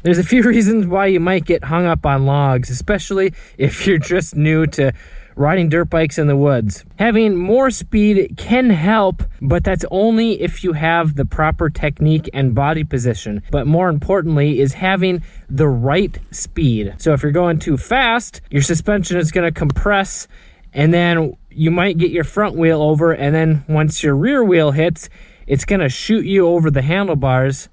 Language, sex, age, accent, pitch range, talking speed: English, male, 20-39, American, 140-180 Hz, 185 wpm